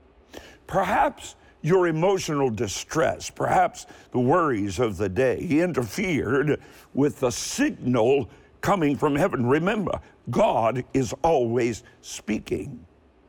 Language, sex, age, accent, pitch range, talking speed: English, male, 60-79, American, 125-175 Hz, 100 wpm